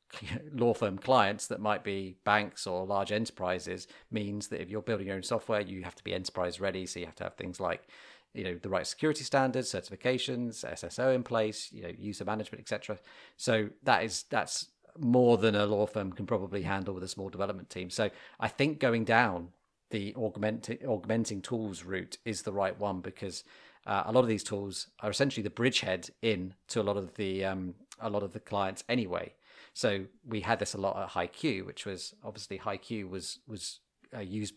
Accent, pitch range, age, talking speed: British, 95-115 Hz, 40-59, 205 wpm